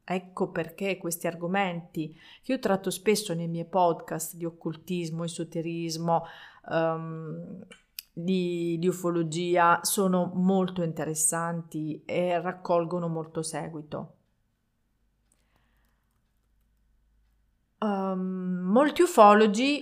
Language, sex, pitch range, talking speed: Italian, female, 165-190 Hz, 80 wpm